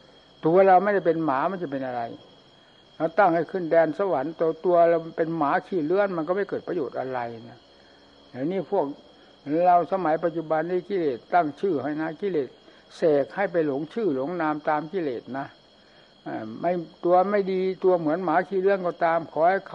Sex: male